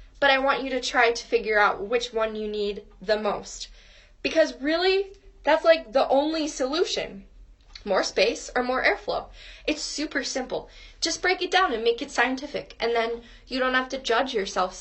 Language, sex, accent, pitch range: English, female, American, 225-295 Hz